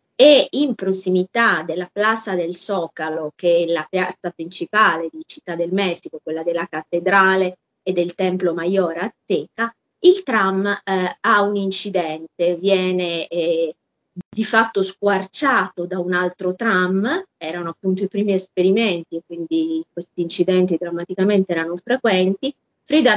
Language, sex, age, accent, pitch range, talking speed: Italian, female, 30-49, native, 175-215 Hz, 135 wpm